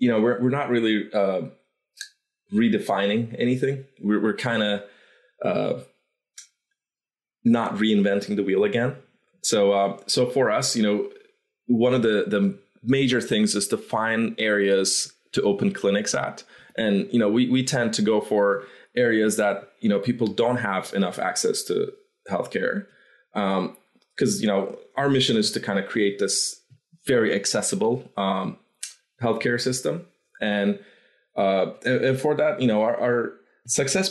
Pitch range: 100-130 Hz